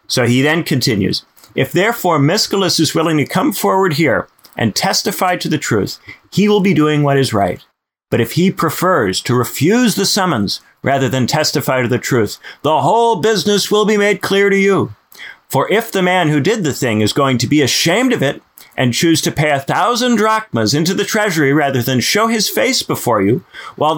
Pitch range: 135-190 Hz